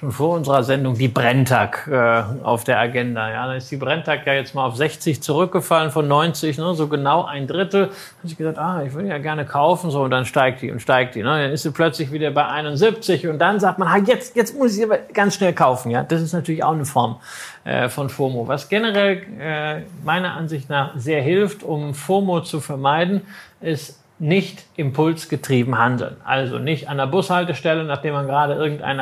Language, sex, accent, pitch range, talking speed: German, male, German, 135-170 Hz, 215 wpm